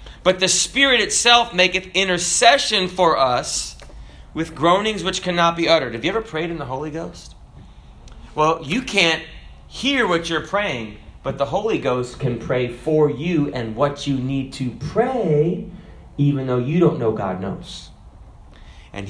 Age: 30-49